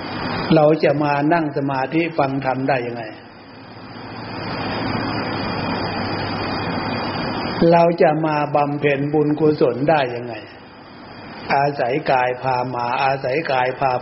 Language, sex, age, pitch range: Thai, male, 60-79, 130-155 Hz